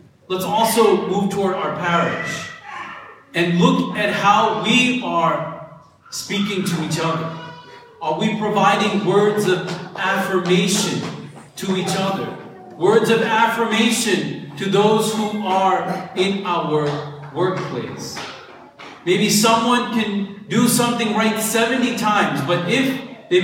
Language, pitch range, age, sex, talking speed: English, 170-210 Hz, 40-59, male, 120 wpm